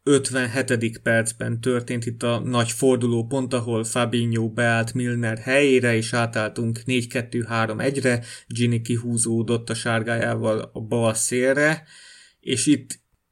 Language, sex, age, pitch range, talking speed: Hungarian, male, 30-49, 115-130 Hz, 115 wpm